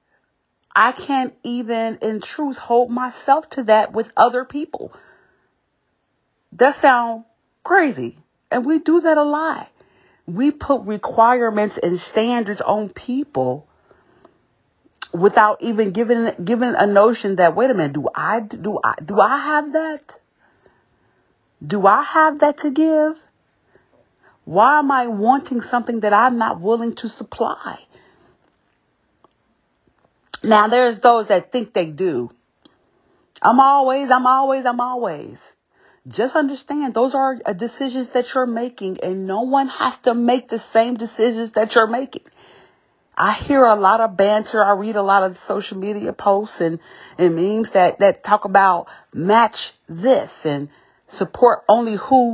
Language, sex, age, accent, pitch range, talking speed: English, female, 40-59, American, 205-265 Hz, 140 wpm